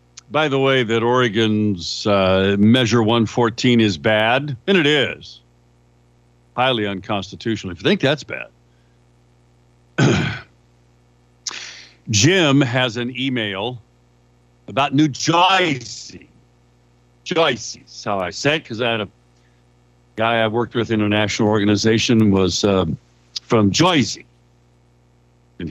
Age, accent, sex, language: 60-79, American, male, English